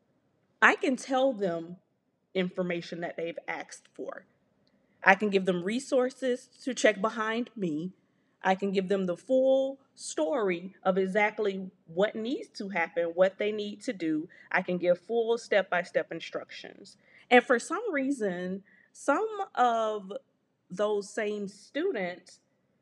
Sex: female